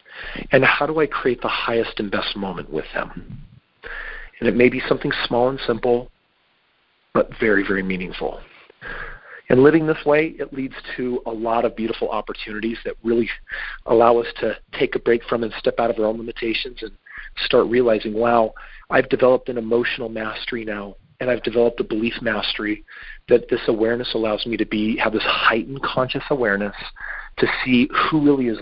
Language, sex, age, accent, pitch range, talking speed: English, male, 40-59, American, 115-150 Hz, 180 wpm